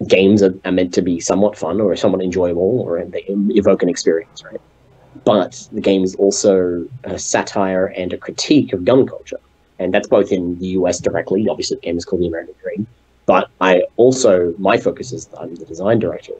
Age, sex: 30-49, male